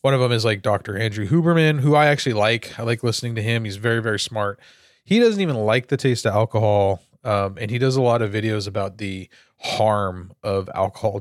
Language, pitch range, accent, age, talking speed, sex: English, 105-135 Hz, American, 30-49, 225 wpm, male